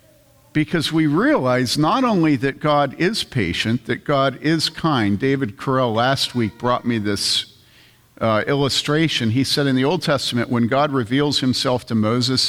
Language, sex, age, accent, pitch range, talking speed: English, male, 50-69, American, 120-150 Hz, 165 wpm